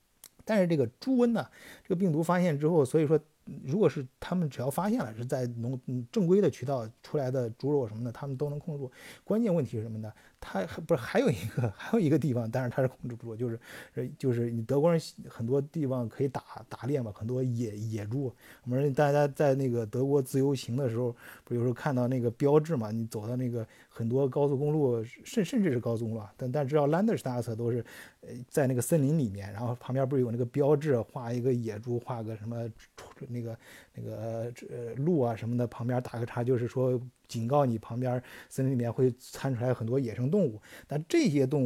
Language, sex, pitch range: Chinese, male, 115-145 Hz